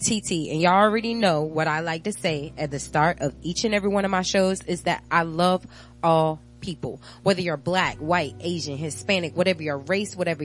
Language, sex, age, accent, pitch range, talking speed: English, female, 20-39, American, 155-210 Hz, 215 wpm